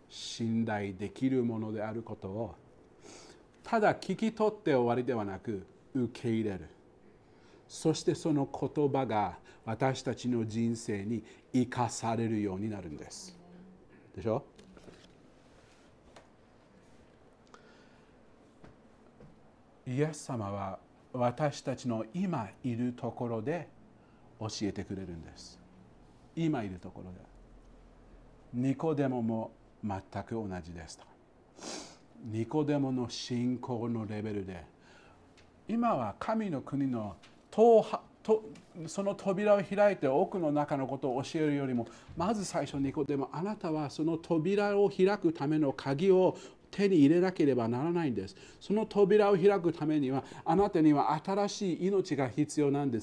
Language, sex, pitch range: Japanese, male, 115-190 Hz